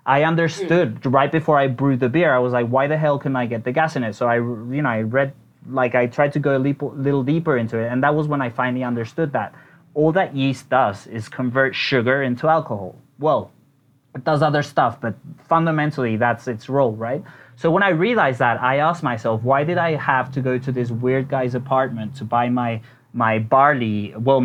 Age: 30-49